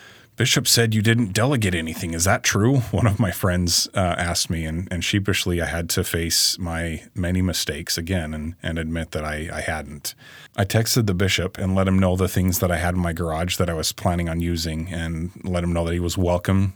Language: English